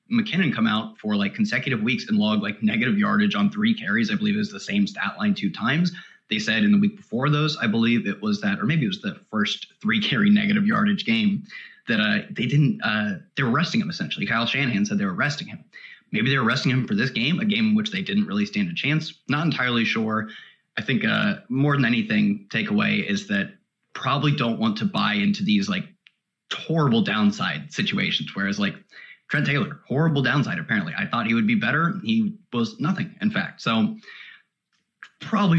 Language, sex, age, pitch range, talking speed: English, male, 30-49, 175-215 Hz, 210 wpm